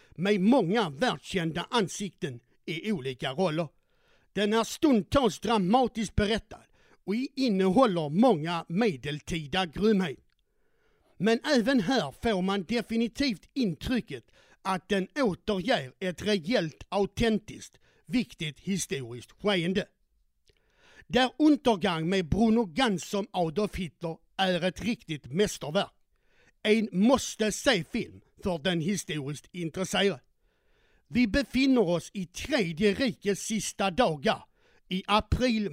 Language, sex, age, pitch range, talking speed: Swedish, male, 60-79, 180-230 Hz, 105 wpm